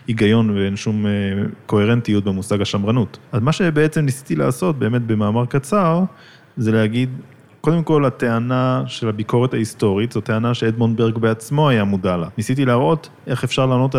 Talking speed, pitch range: 150 wpm, 110-140 Hz